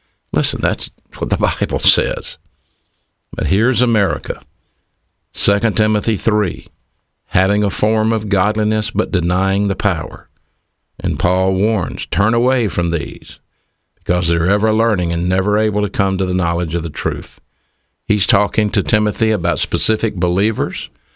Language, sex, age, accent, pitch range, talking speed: English, male, 60-79, American, 85-110 Hz, 140 wpm